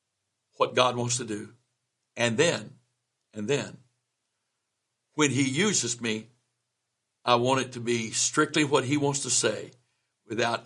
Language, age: English, 60-79